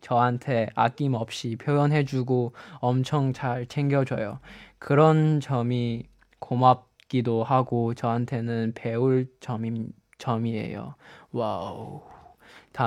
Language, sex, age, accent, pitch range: Chinese, male, 20-39, Korean, 120-160 Hz